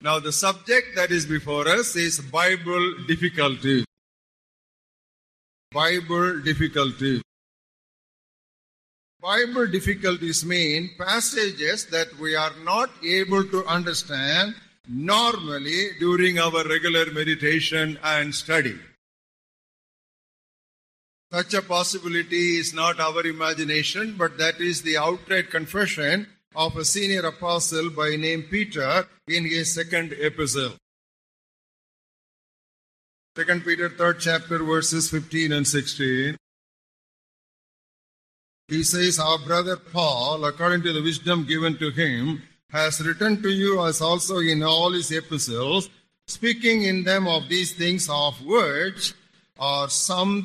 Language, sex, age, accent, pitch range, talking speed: English, male, 50-69, Indian, 155-180 Hz, 110 wpm